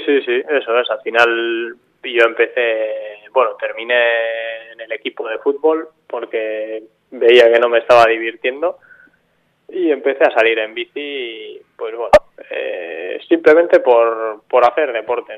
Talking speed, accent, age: 145 wpm, Spanish, 20-39